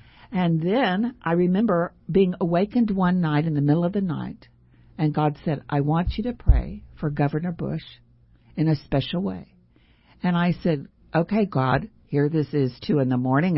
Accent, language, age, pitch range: American, English, 60-79, 130-180 Hz